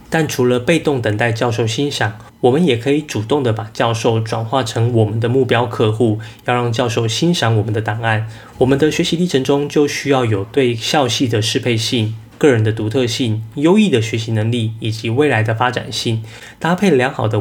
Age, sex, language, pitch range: 20-39, male, Chinese, 110-130 Hz